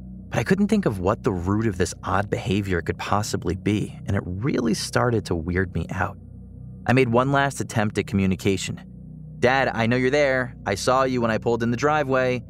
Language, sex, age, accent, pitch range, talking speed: English, male, 30-49, American, 95-120 Hz, 210 wpm